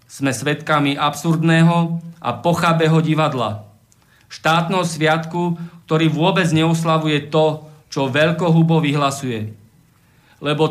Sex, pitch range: male, 140-170 Hz